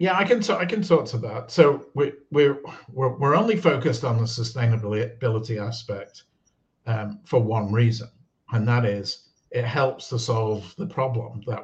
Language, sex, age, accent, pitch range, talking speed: English, male, 50-69, British, 110-130 Hz, 160 wpm